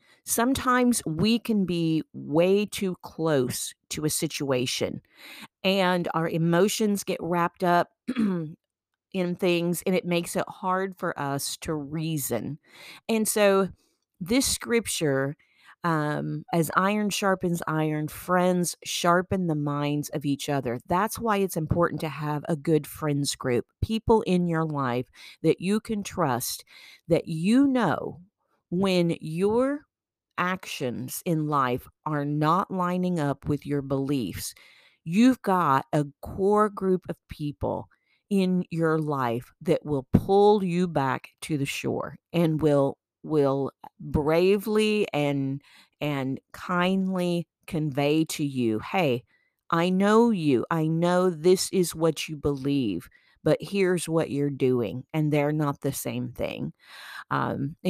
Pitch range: 145-185 Hz